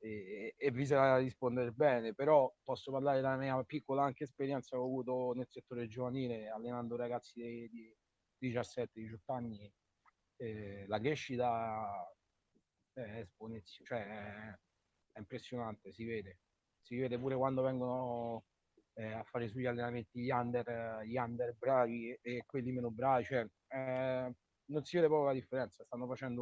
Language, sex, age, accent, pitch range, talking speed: Italian, male, 30-49, native, 115-130 Hz, 150 wpm